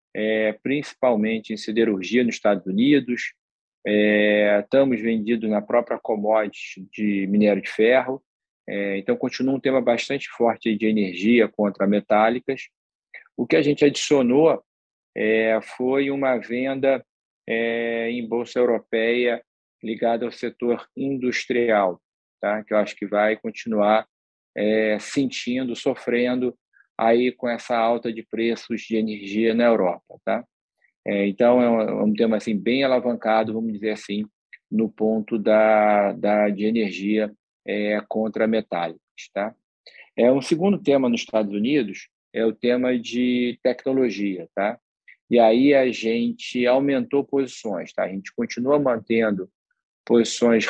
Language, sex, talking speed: Portuguese, male, 135 wpm